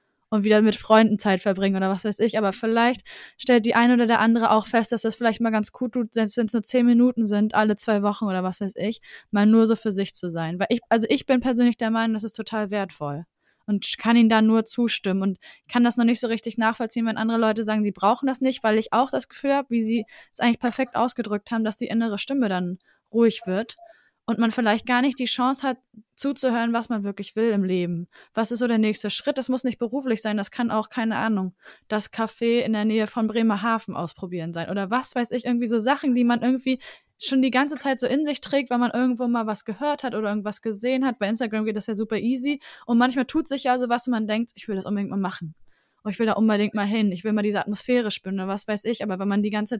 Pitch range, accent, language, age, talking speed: 205-240 Hz, German, German, 20-39, 255 wpm